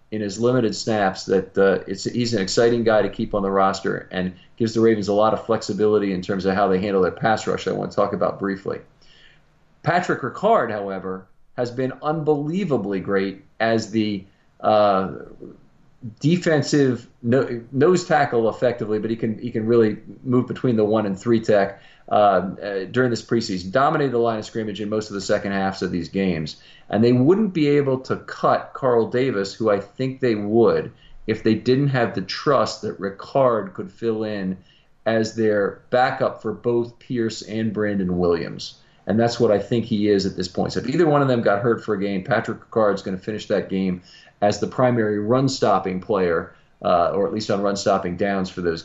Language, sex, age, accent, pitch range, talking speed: English, male, 40-59, American, 100-120 Hz, 195 wpm